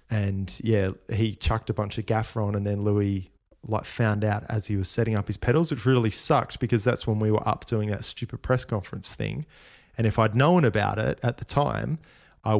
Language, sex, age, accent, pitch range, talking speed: English, male, 20-39, Australian, 105-120 Hz, 225 wpm